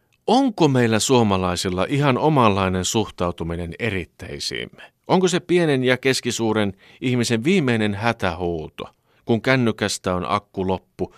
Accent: native